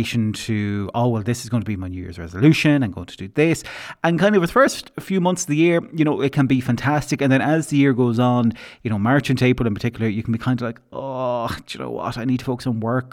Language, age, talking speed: English, 30-49, 295 wpm